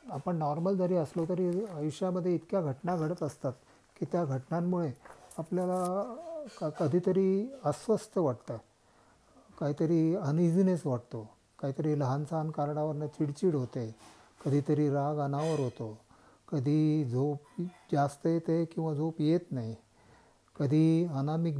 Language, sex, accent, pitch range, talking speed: Marathi, male, native, 135-175 Hz, 115 wpm